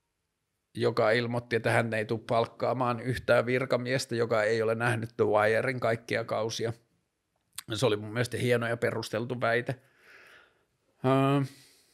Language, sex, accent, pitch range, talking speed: Finnish, male, native, 105-130 Hz, 125 wpm